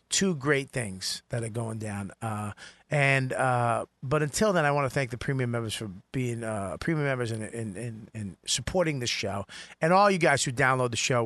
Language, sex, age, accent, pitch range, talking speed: English, male, 40-59, American, 125-165 Hz, 215 wpm